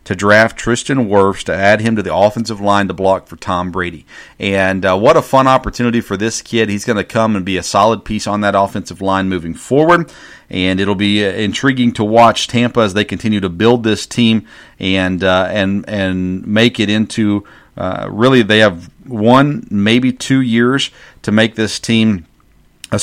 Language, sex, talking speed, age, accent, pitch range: English, male, 195 wpm, 40-59, American, 100-120 Hz